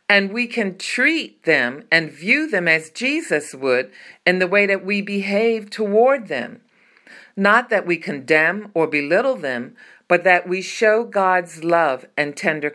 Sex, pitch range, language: female, 160-210 Hz, English